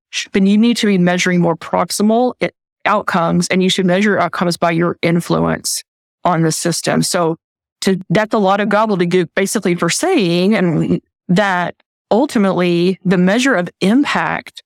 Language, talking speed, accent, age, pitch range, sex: English, 145 wpm, American, 20-39, 170-205 Hz, female